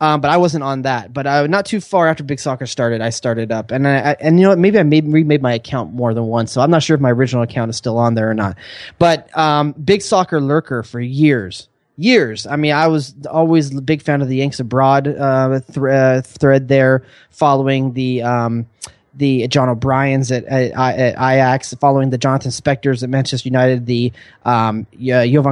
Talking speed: 220 wpm